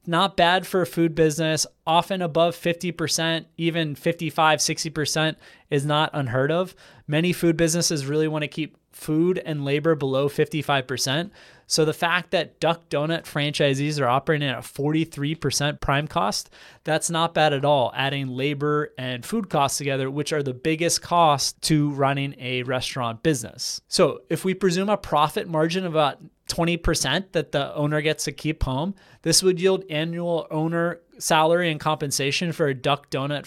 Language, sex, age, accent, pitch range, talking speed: English, male, 20-39, American, 145-170 Hz, 165 wpm